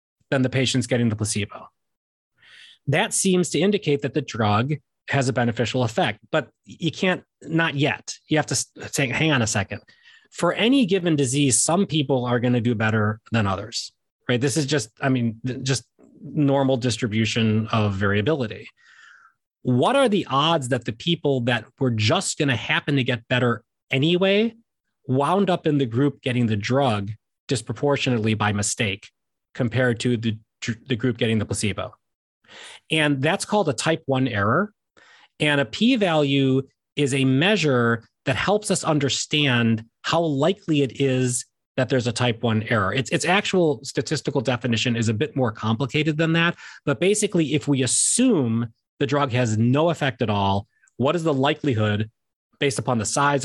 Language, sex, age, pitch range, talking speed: English, male, 30-49, 115-150 Hz, 165 wpm